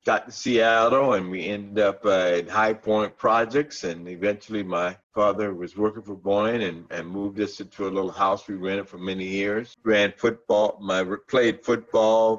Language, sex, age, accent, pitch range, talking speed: English, male, 50-69, American, 95-115 Hz, 185 wpm